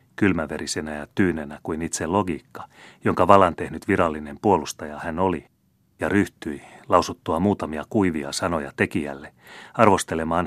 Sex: male